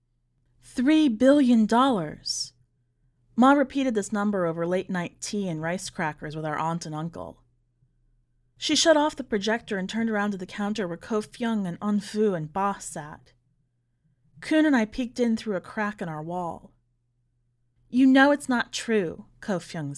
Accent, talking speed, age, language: American, 160 wpm, 30-49, English